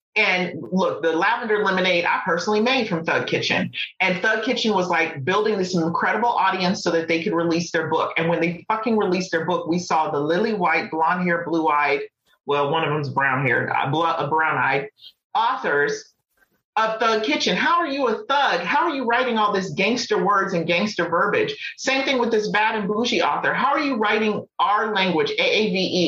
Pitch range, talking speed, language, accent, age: 170-225 Hz, 200 wpm, English, American, 40-59